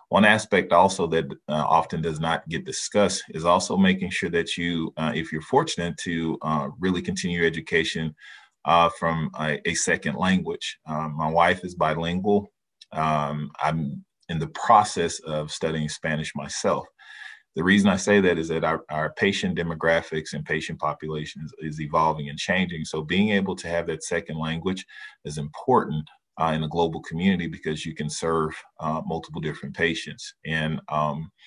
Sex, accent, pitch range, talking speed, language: male, American, 80-90 Hz, 170 wpm, English